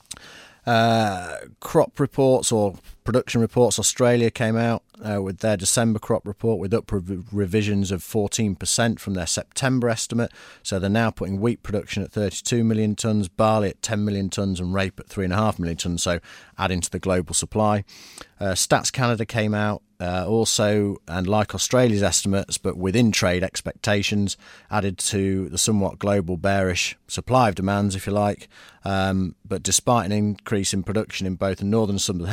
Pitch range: 95-110 Hz